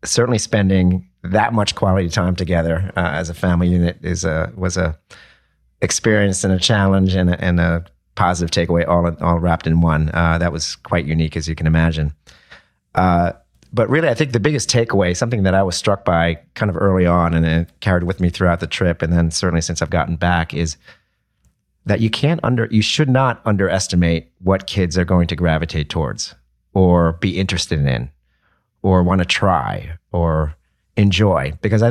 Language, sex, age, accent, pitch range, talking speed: English, male, 40-59, American, 85-110 Hz, 190 wpm